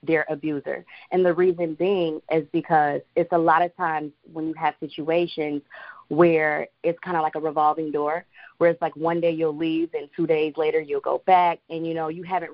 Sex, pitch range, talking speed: female, 150-175 Hz, 210 wpm